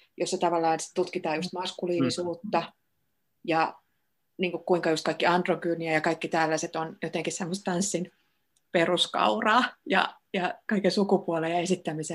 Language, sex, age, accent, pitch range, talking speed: Finnish, female, 30-49, native, 165-190 Hz, 130 wpm